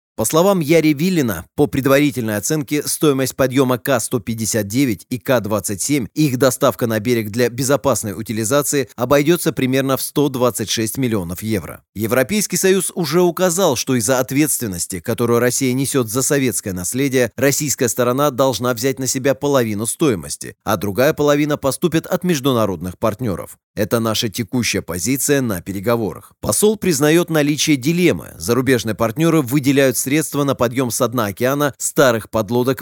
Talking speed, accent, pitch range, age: 135 wpm, native, 110-145 Hz, 30-49